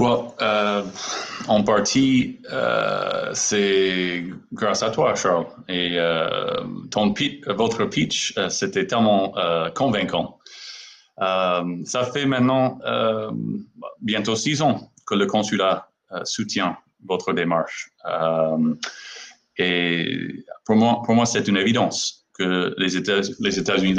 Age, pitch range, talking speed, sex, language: 30-49, 95-125 Hz, 125 wpm, male, French